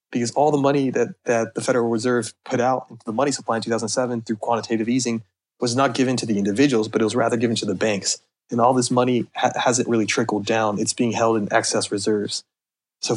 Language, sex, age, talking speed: English, male, 30-49, 230 wpm